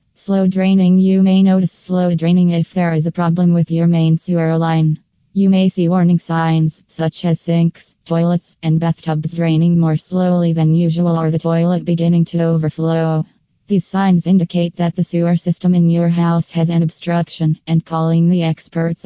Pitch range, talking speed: 165-180 Hz, 175 wpm